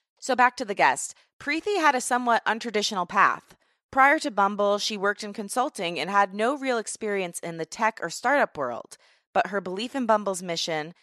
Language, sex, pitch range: English, female, 175-230 Hz